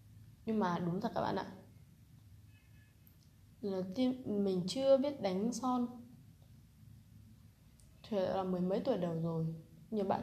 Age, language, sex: 20-39, Vietnamese, female